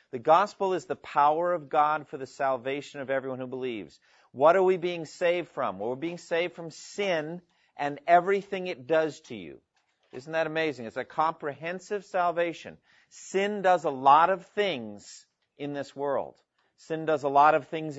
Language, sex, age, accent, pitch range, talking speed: English, male, 40-59, American, 135-170 Hz, 180 wpm